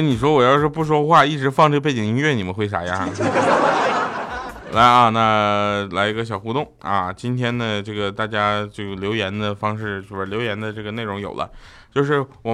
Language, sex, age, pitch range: Chinese, male, 20-39, 110-170 Hz